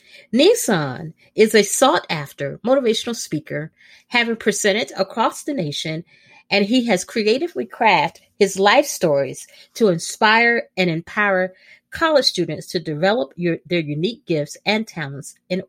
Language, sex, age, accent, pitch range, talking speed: English, female, 40-59, American, 170-240 Hz, 135 wpm